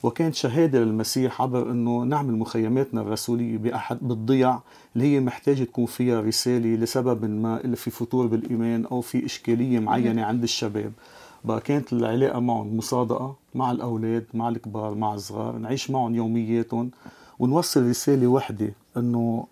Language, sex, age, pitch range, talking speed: Arabic, male, 40-59, 115-130 Hz, 140 wpm